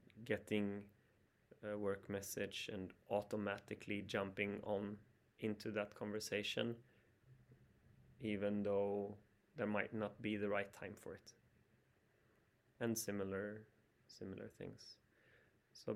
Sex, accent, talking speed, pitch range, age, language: male, Swedish, 100 wpm, 100-115 Hz, 30-49, English